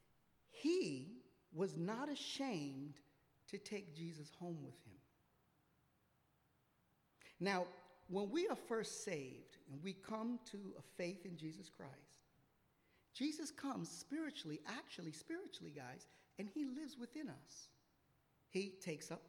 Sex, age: male, 50-69